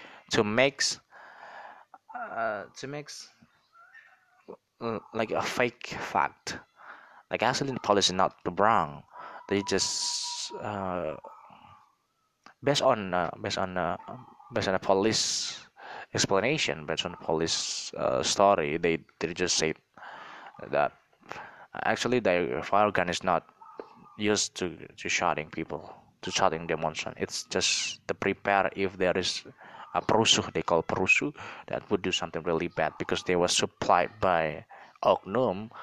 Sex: male